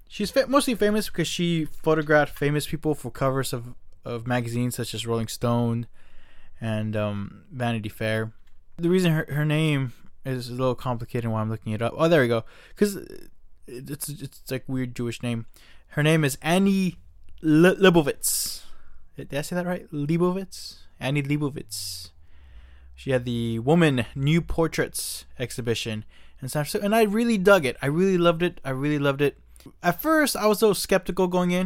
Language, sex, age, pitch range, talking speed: English, male, 20-39, 115-170 Hz, 175 wpm